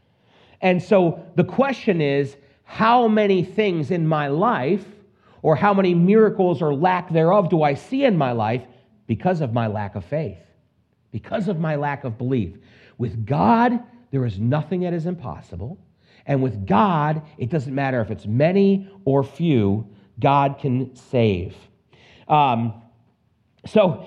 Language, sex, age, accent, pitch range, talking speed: English, male, 40-59, American, 120-175 Hz, 150 wpm